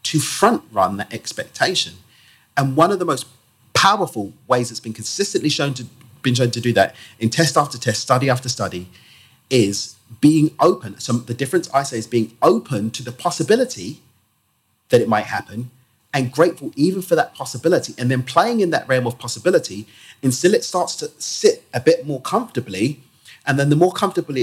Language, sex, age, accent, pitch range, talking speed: English, male, 30-49, British, 115-165 Hz, 180 wpm